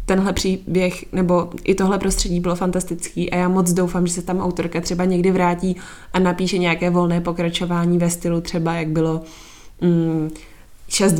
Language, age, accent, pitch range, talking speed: Czech, 20-39, native, 170-190 Hz, 165 wpm